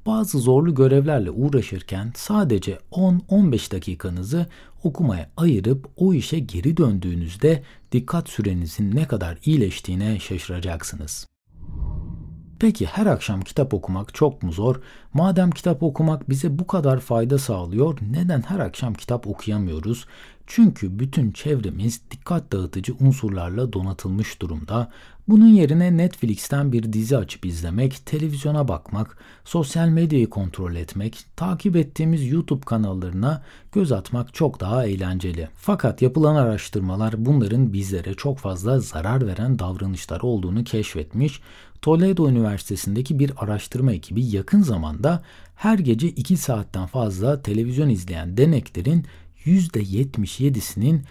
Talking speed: 115 wpm